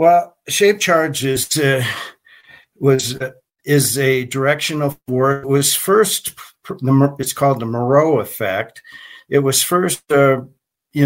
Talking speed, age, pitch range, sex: 125 wpm, 50-69, 120-145 Hz, male